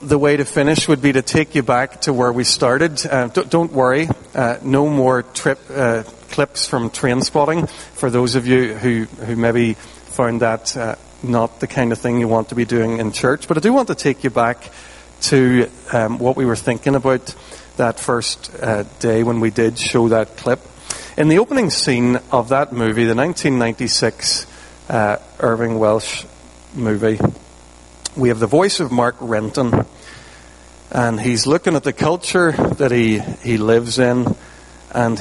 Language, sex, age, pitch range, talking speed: English, male, 40-59, 110-140 Hz, 180 wpm